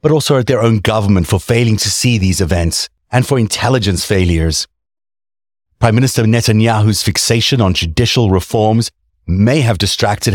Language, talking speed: English, 150 wpm